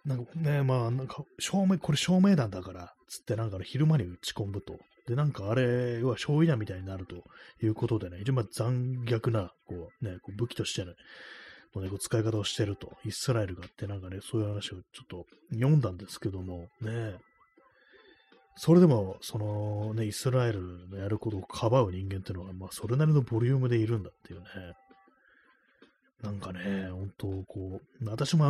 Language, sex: Japanese, male